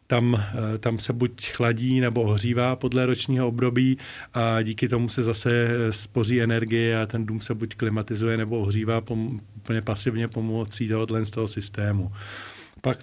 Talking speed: 145 wpm